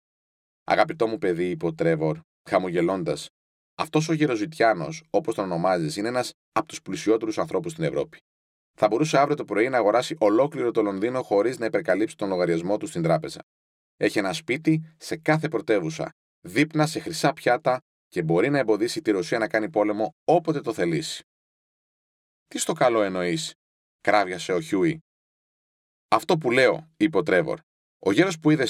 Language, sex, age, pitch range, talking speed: Greek, male, 30-49, 95-155 Hz, 160 wpm